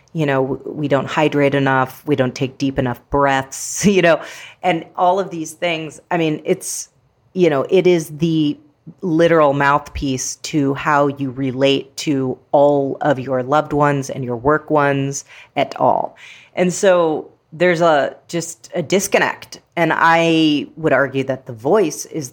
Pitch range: 135-165 Hz